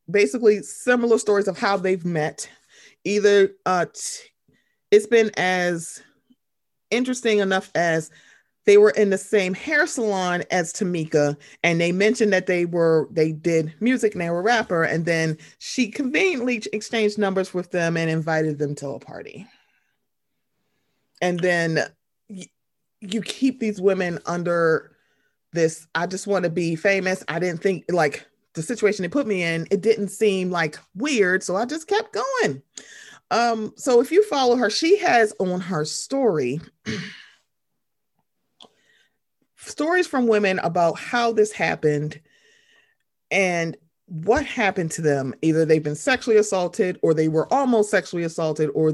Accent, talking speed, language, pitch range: American, 150 wpm, English, 165-220 Hz